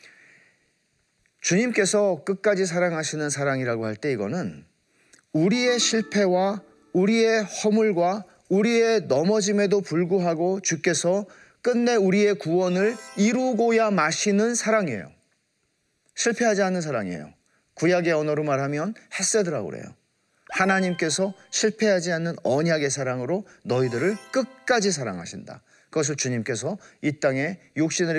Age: 40-59